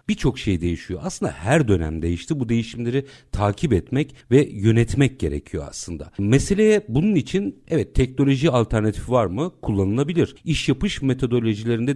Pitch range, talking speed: 105-150 Hz, 135 wpm